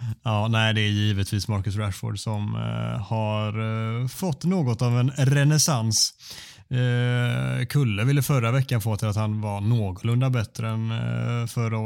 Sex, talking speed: male, 150 wpm